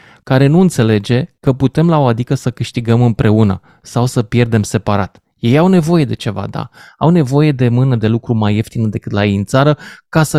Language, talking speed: Romanian, 210 wpm